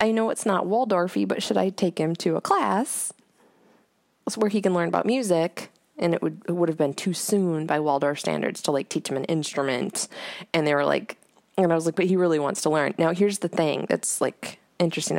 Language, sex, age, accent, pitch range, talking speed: English, female, 20-39, American, 155-205 Hz, 225 wpm